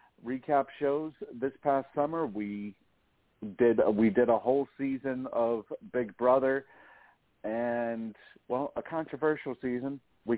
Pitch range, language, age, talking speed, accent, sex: 115-140 Hz, English, 50-69, 125 wpm, American, male